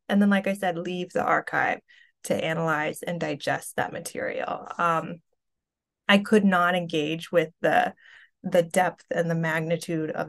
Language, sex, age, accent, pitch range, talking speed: English, female, 20-39, American, 175-215 Hz, 155 wpm